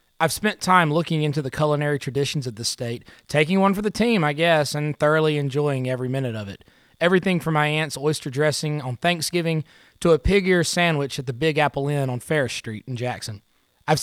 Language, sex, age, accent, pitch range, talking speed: English, male, 20-39, American, 135-165 Hz, 210 wpm